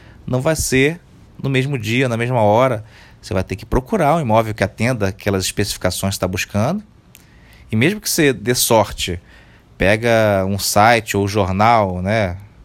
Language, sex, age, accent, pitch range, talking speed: Portuguese, male, 30-49, Brazilian, 100-125 Hz, 170 wpm